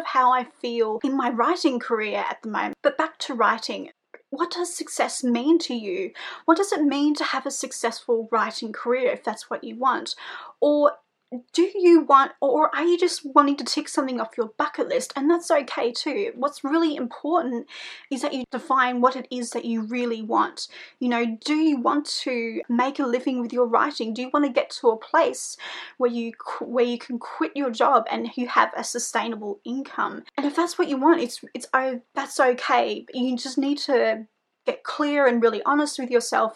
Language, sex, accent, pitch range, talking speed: English, female, Australian, 240-300 Hz, 205 wpm